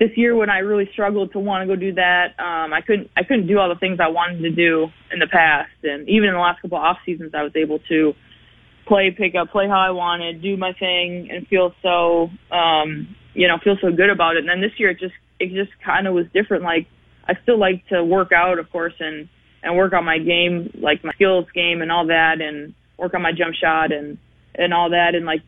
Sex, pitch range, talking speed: female, 165-195 Hz, 255 wpm